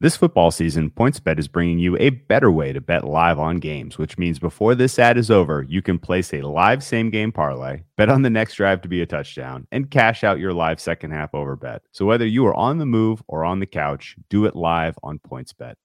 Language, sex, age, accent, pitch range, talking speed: English, male, 30-49, American, 80-105 Hz, 240 wpm